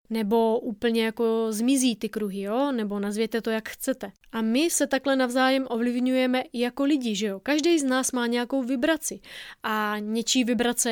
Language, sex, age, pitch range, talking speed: Czech, female, 20-39, 220-275 Hz, 170 wpm